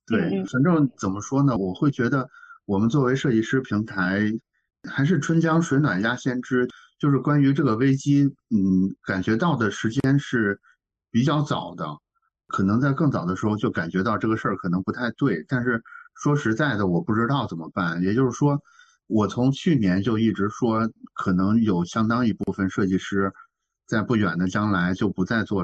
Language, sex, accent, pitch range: Chinese, male, native, 100-140 Hz